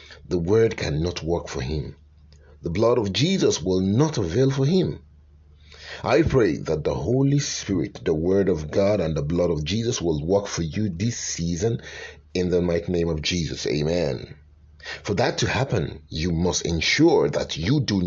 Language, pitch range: English, 80-110 Hz